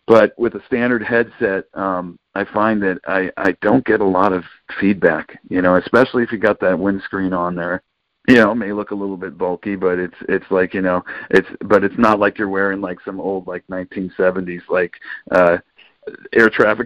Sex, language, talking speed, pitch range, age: male, English, 205 wpm, 90-105 Hz, 40-59